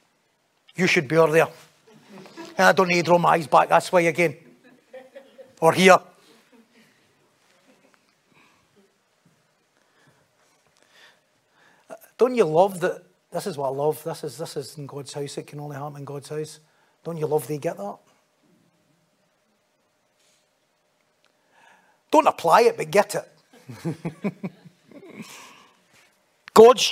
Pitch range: 165-225 Hz